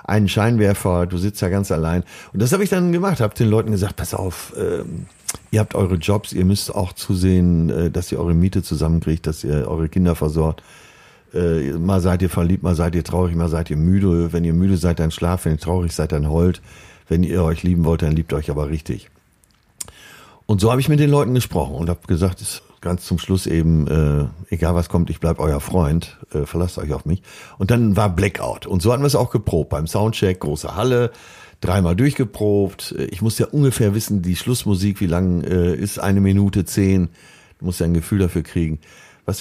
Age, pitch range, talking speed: 50-69, 85-100 Hz, 215 wpm